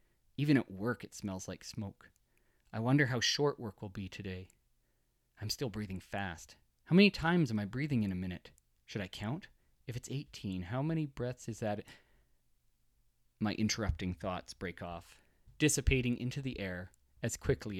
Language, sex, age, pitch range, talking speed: English, male, 30-49, 90-125 Hz, 170 wpm